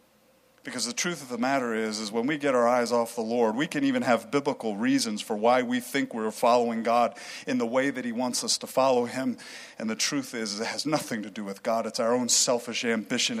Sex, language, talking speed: male, English, 245 wpm